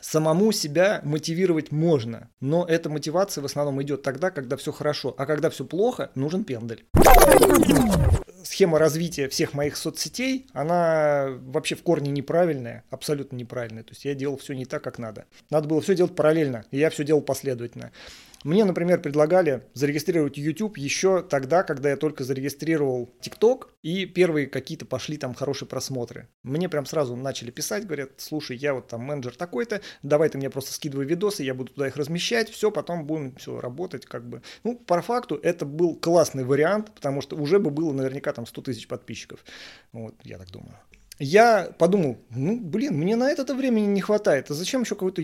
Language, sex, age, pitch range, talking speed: Russian, male, 30-49, 135-170 Hz, 180 wpm